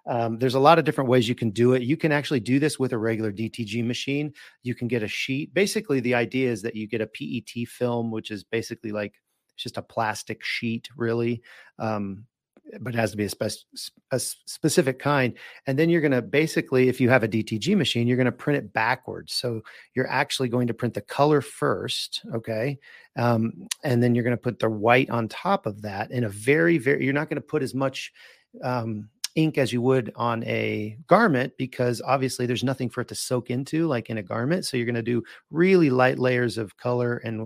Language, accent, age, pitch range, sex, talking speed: English, American, 40-59, 115-140 Hz, male, 225 wpm